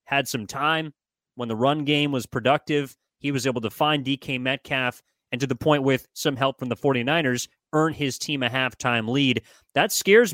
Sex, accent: male, American